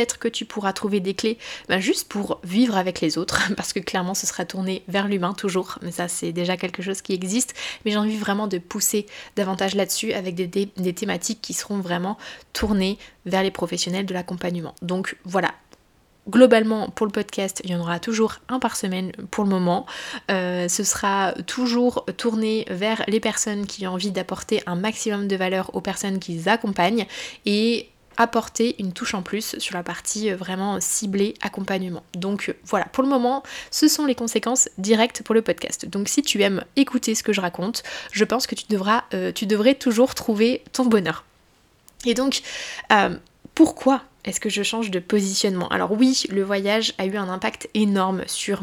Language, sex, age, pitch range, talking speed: French, female, 20-39, 190-230 Hz, 190 wpm